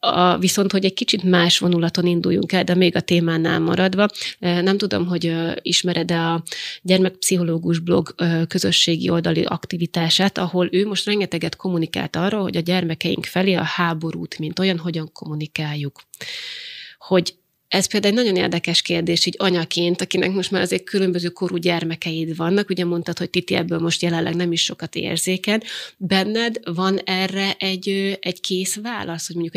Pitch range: 170-190 Hz